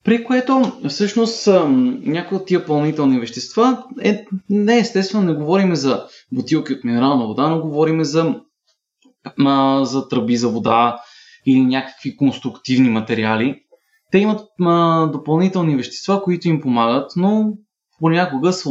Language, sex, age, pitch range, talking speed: Bulgarian, male, 20-39, 130-220 Hz, 120 wpm